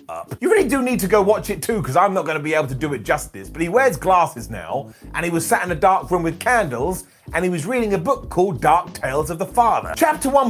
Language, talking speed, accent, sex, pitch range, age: English, 280 wpm, British, male, 160-215 Hz, 30-49